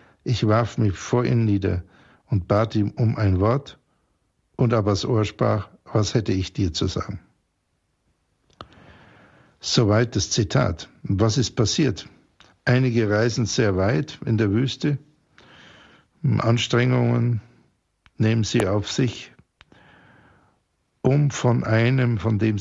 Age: 60-79